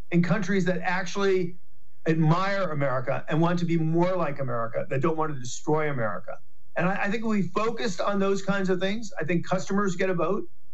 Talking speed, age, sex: 200 wpm, 50-69, male